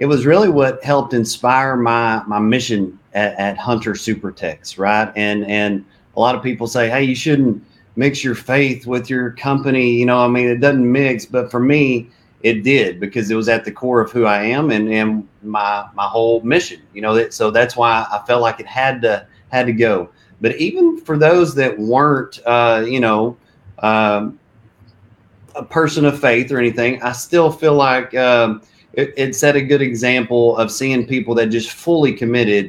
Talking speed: 195 wpm